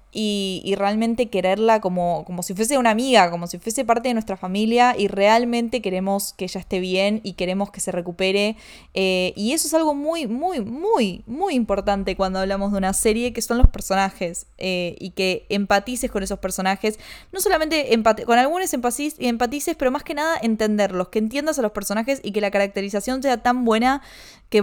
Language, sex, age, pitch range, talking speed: Spanish, female, 20-39, 195-230 Hz, 190 wpm